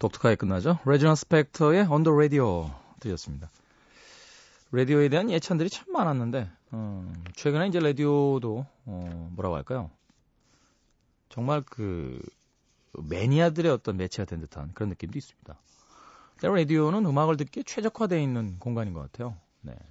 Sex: male